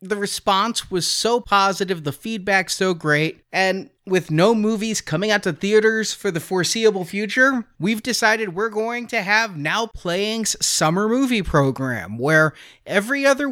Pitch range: 160-215 Hz